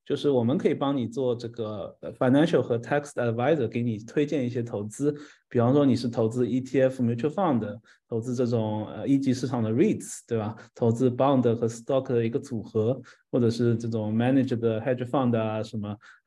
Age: 20-39